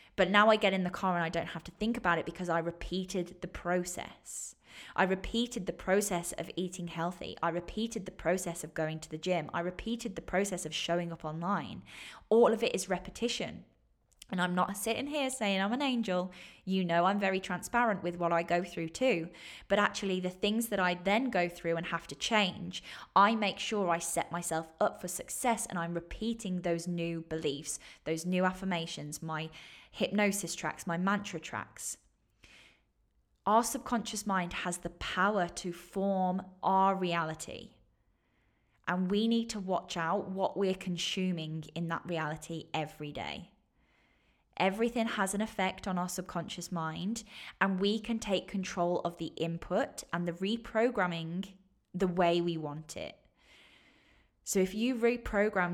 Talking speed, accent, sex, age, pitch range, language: 170 wpm, British, female, 20-39, 165-195 Hz, English